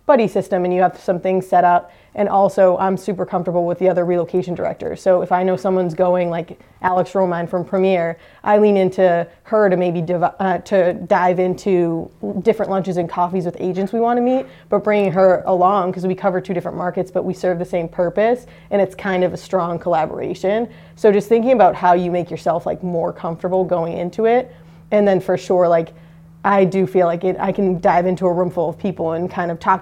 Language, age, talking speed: English, 20-39, 220 wpm